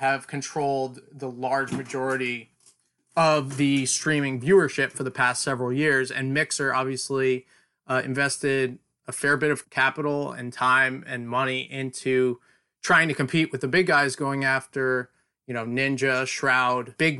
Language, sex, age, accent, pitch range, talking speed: English, male, 20-39, American, 130-155 Hz, 150 wpm